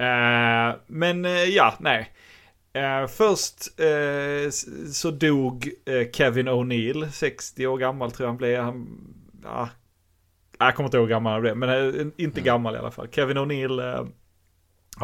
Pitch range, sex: 105-120 Hz, male